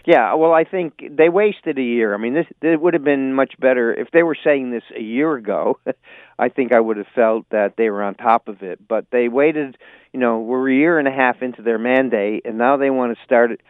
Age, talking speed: 50-69, 255 wpm